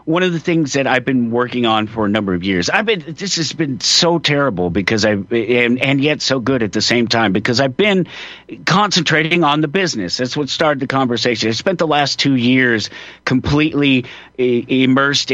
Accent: American